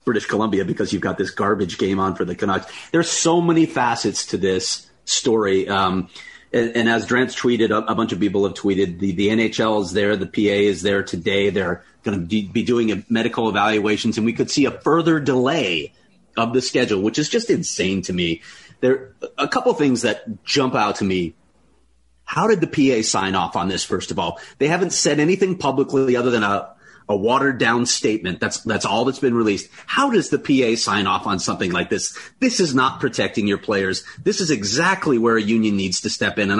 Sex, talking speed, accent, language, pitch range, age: male, 215 wpm, American, English, 100-140 Hz, 30-49